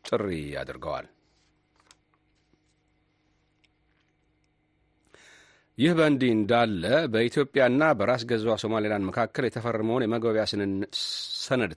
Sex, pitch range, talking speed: male, 105-130 Hz, 65 wpm